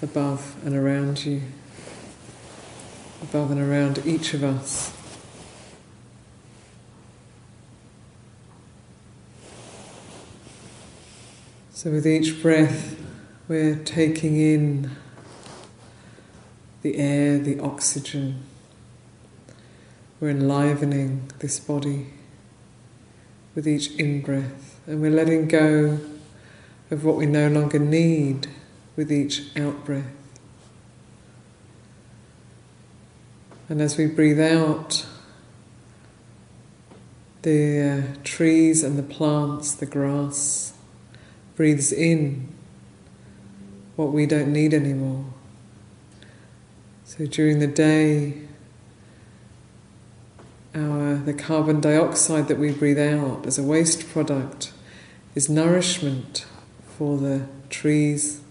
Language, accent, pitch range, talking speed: English, British, 135-155 Hz, 85 wpm